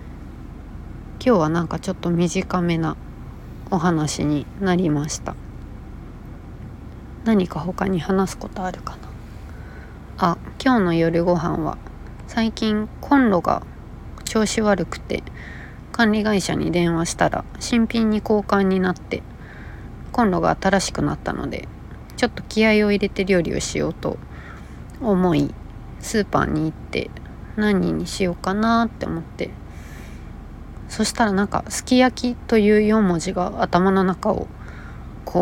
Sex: female